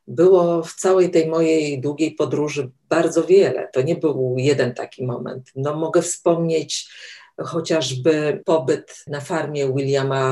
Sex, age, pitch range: female, 50-69, 135-165 Hz